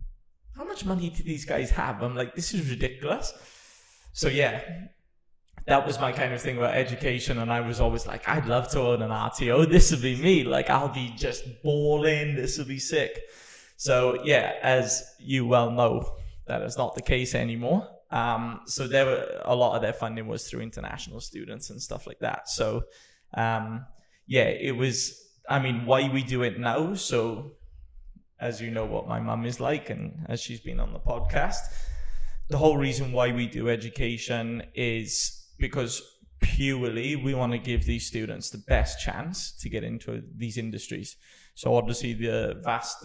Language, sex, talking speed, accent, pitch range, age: English, male, 185 wpm, British, 115-135 Hz, 20-39